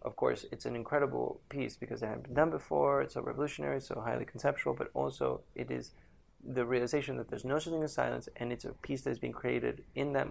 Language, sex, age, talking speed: English, male, 20-39, 225 wpm